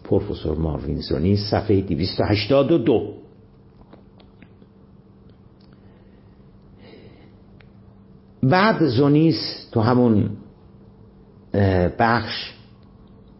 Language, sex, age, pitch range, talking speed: Persian, male, 50-69, 90-115 Hz, 45 wpm